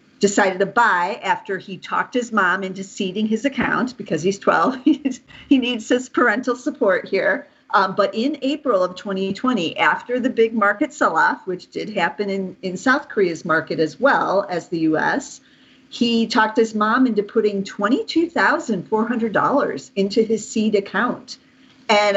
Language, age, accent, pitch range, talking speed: English, 50-69, American, 180-250 Hz, 155 wpm